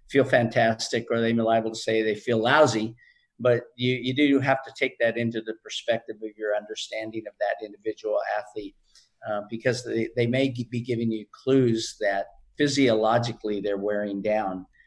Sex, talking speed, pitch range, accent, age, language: male, 180 wpm, 110-125 Hz, American, 50-69, English